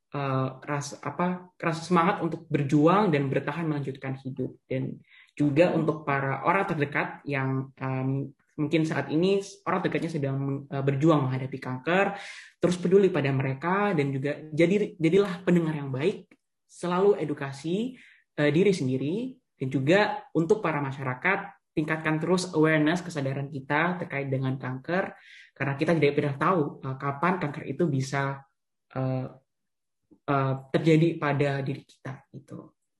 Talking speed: 135 wpm